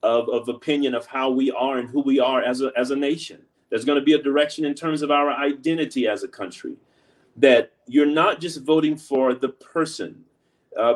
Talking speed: 210 wpm